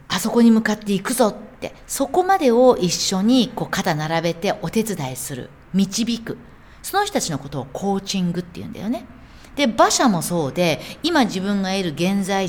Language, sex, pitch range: Japanese, female, 155-250 Hz